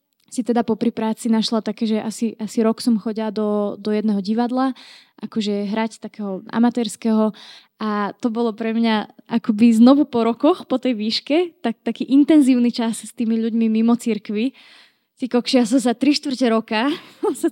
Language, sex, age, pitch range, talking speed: Slovak, female, 20-39, 220-255 Hz, 170 wpm